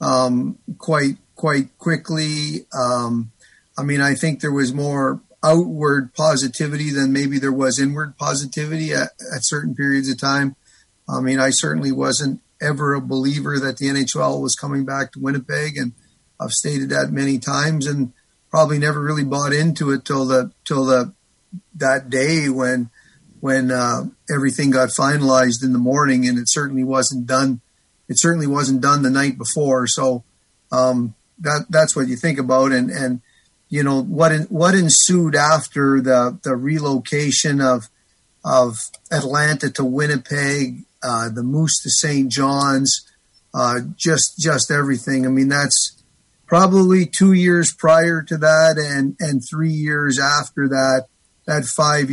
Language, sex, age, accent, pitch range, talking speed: English, male, 50-69, American, 130-150 Hz, 155 wpm